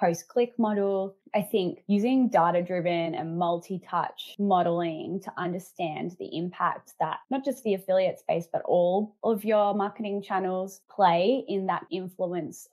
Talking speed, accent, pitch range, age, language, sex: 135 wpm, Australian, 170-200 Hz, 20-39, English, female